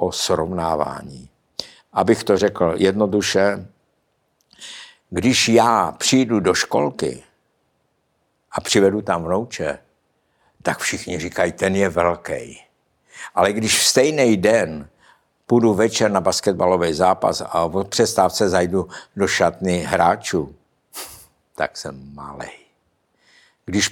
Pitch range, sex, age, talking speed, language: 90-110 Hz, male, 60-79, 105 wpm, Czech